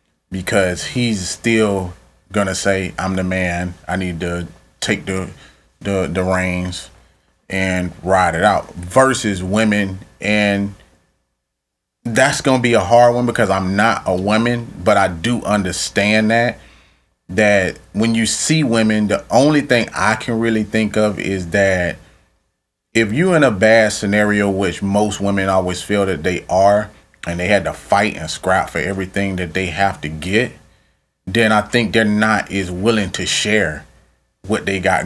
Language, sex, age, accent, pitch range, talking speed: English, male, 30-49, American, 90-110 Hz, 160 wpm